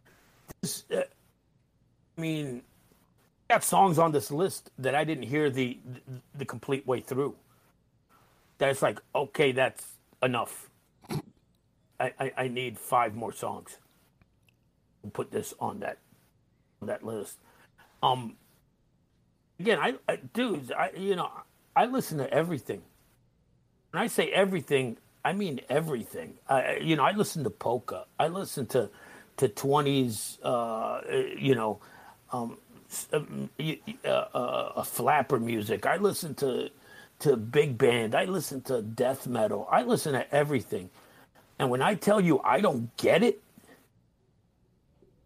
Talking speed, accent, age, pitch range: 140 wpm, American, 50-69, 125-160 Hz